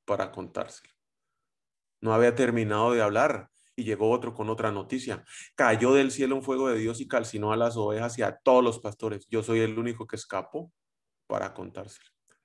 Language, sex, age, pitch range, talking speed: Spanish, male, 30-49, 110-130 Hz, 185 wpm